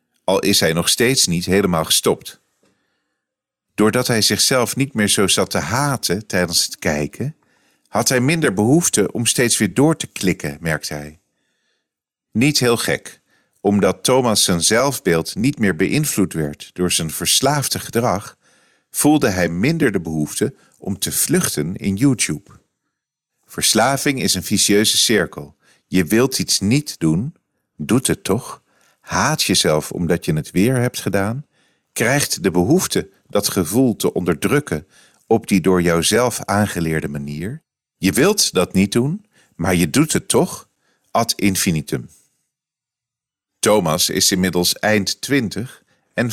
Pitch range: 90-130 Hz